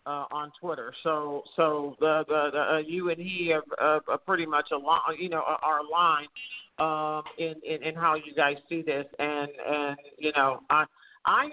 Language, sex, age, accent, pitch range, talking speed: English, male, 50-69, American, 165-230 Hz, 185 wpm